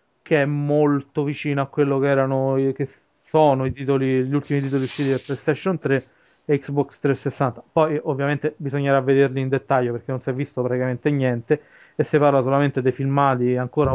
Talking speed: 180 wpm